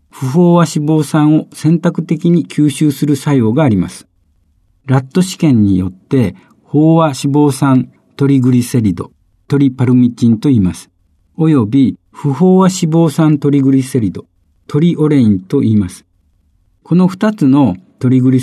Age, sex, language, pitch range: 50-69, male, Japanese, 110-155 Hz